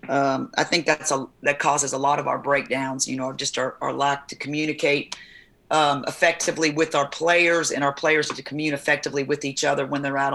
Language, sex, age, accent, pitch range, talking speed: English, female, 40-59, American, 140-165 Hz, 215 wpm